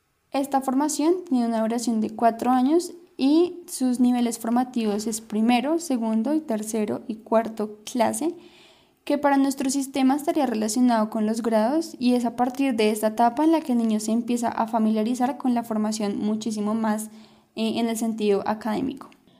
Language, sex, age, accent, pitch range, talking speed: Spanish, female, 10-29, Colombian, 225-275 Hz, 170 wpm